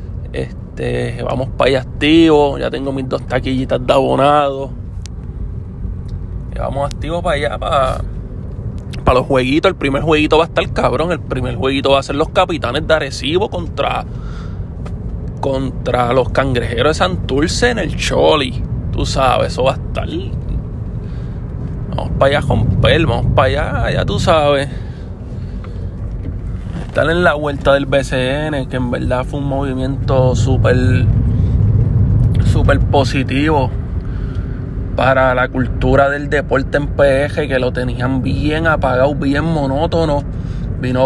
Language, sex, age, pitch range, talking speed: Spanish, male, 20-39, 110-135 Hz, 135 wpm